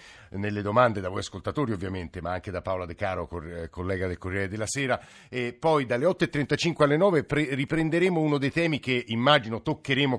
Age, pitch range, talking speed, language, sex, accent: 50-69, 105-130 Hz, 175 wpm, Italian, male, native